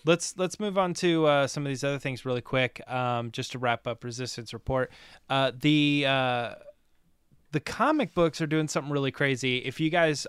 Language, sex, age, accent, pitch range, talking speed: English, male, 20-39, American, 125-150 Hz, 200 wpm